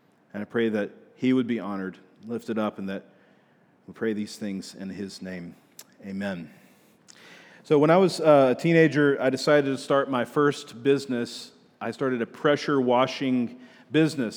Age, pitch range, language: 40-59, 125-150 Hz, English